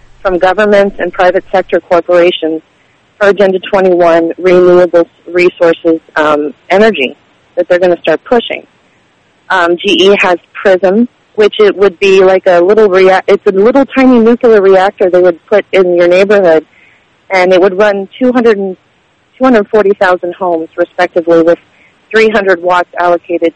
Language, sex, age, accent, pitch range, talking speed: English, female, 30-49, American, 175-205 Hz, 135 wpm